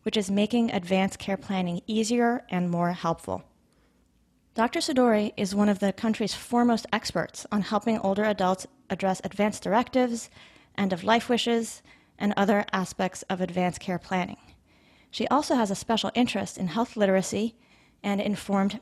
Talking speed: 155 wpm